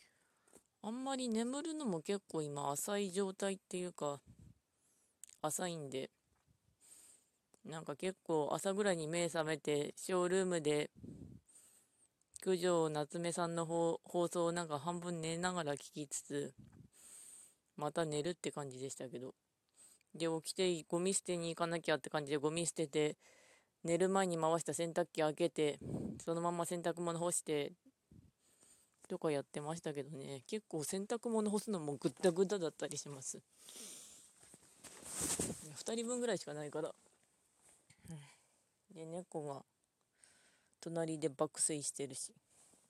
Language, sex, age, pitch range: Japanese, female, 20-39, 150-180 Hz